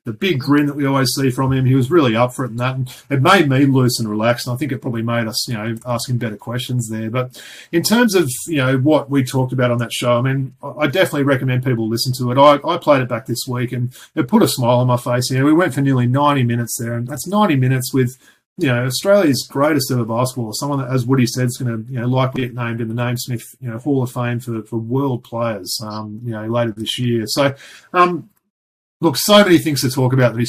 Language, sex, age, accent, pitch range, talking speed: English, male, 30-49, Australian, 120-140 Hz, 270 wpm